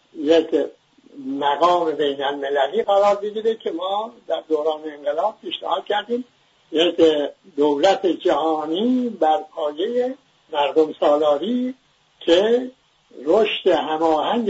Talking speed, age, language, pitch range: 95 wpm, 60-79, English, 155-200 Hz